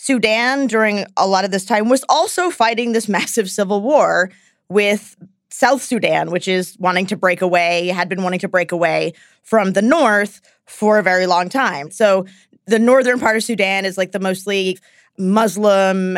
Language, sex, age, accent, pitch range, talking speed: English, female, 20-39, American, 190-255 Hz, 180 wpm